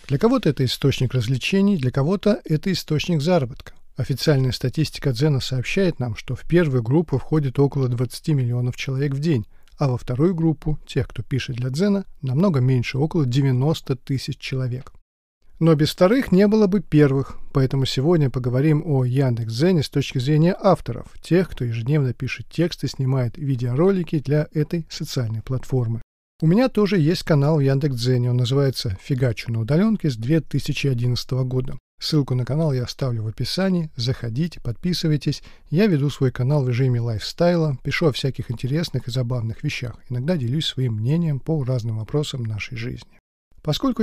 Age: 40-59